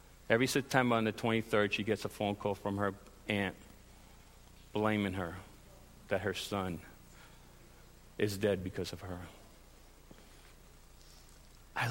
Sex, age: male, 50-69